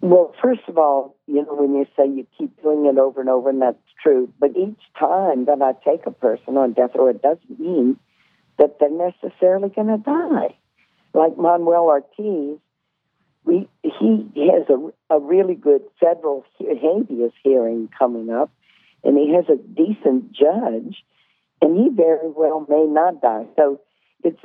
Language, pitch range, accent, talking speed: English, 135-175 Hz, American, 170 wpm